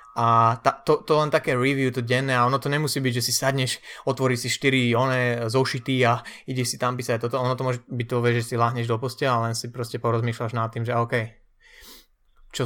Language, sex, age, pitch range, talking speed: Slovak, male, 20-39, 115-130 Hz, 230 wpm